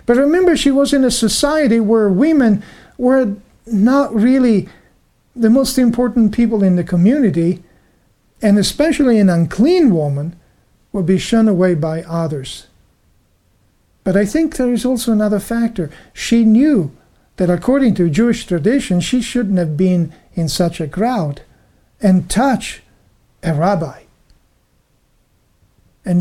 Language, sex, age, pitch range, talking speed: English, male, 50-69, 170-240 Hz, 135 wpm